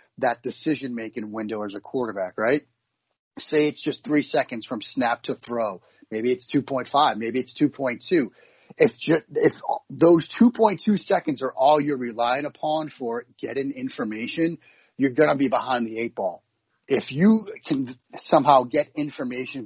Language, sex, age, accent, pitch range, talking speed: English, male, 40-59, American, 120-150 Hz, 150 wpm